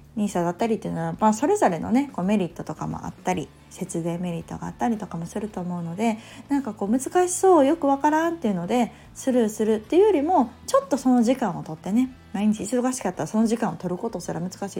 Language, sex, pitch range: Japanese, female, 180-250 Hz